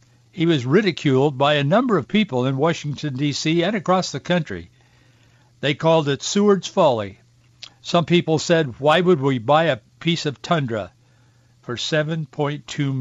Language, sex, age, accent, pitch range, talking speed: English, male, 60-79, American, 120-150 Hz, 150 wpm